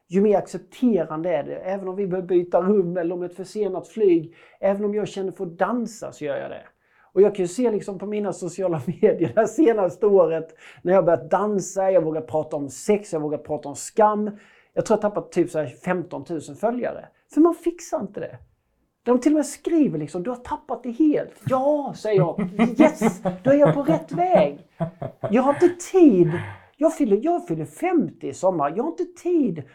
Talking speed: 215 wpm